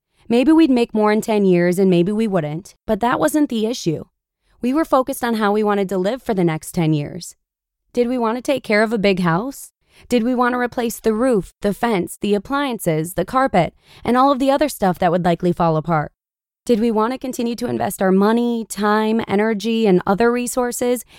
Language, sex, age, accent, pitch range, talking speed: English, female, 20-39, American, 190-245 Hz, 220 wpm